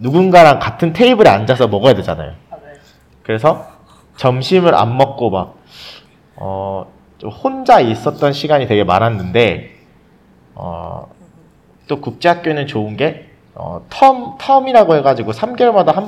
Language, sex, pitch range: Korean, male, 100-155 Hz